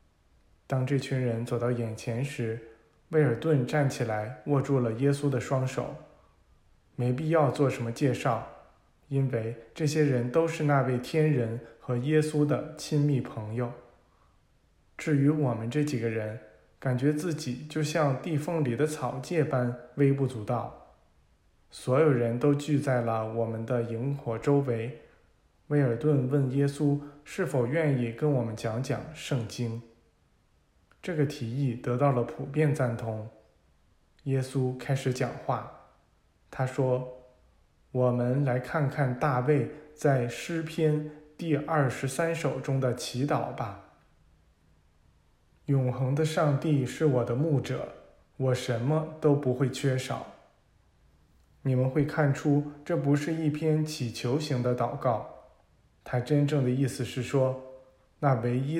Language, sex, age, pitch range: Chinese, male, 20-39, 120-145 Hz